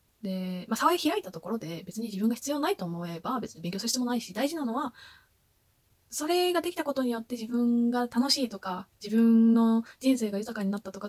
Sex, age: female, 20-39